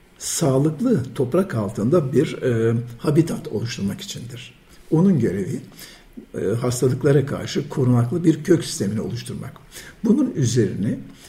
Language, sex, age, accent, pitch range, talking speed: Turkish, male, 60-79, native, 115-160 Hz, 105 wpm